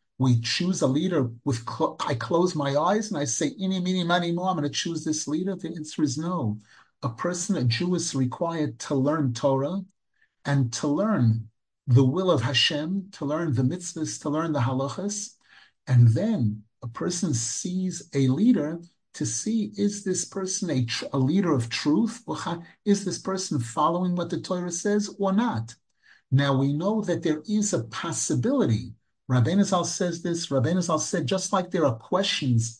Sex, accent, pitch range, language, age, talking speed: male, American, 130-185 Hz, English, 50-69, 170 wpm